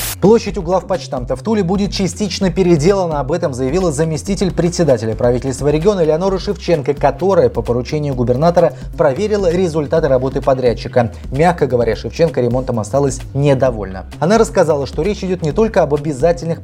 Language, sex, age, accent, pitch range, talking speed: Russian, male, 20-39, native, 125-170 Hz, 145 wpm